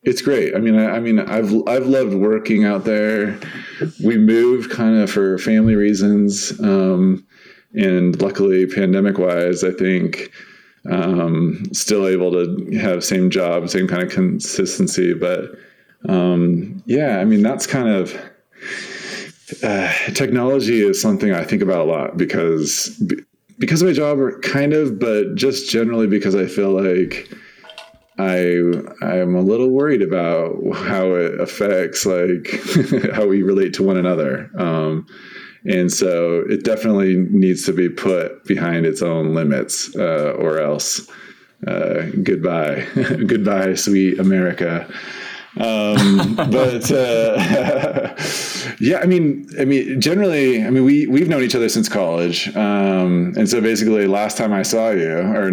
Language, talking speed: English, 145 wpm